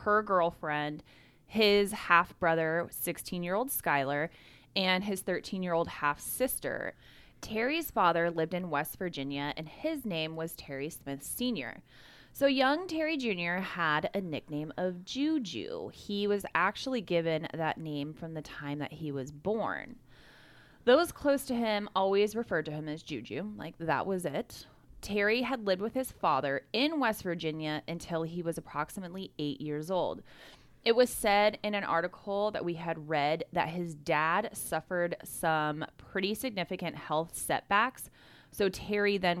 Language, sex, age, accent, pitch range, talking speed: English, female, 20-39, American, 150-210 Hz, 150 wpm